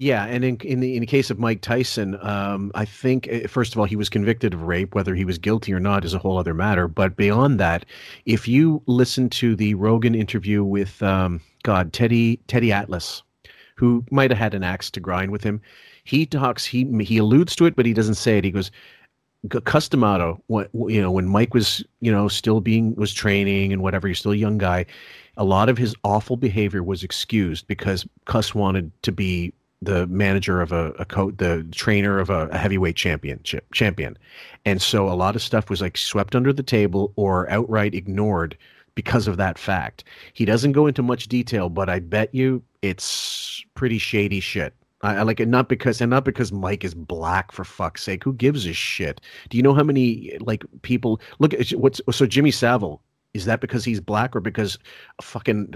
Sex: male